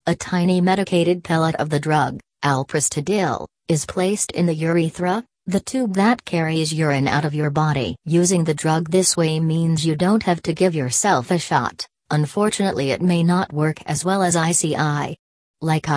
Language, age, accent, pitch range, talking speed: English, 40-59, American, 150-175 Hz, 175 wpm